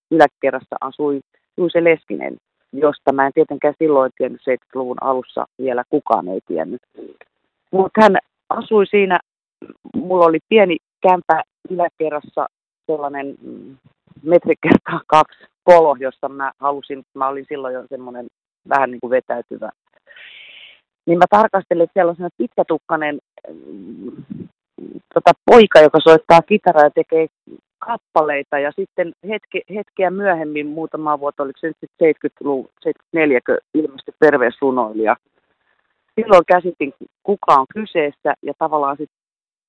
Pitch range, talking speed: 135-175 Hz, 110 wpm